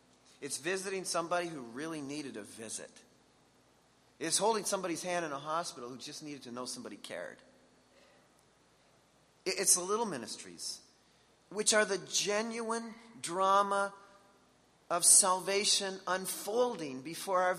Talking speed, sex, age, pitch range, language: 125 wpm, male, 40-59, 185-245 Hz, English